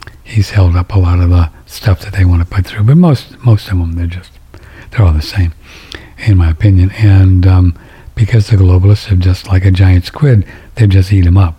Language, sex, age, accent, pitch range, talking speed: English, male, 60-79, American, 80-110 Hz, 230 wpm